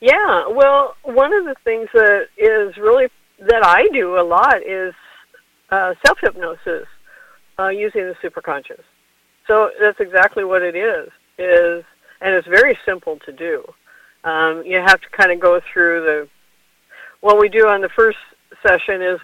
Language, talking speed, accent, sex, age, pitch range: English, 160 wpm, American, female, 50-69, 175-250 Hz